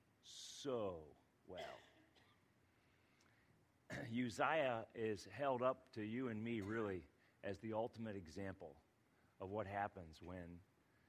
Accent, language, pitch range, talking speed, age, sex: American, English, 100-120 Hz, 105 wpm, 40-59, male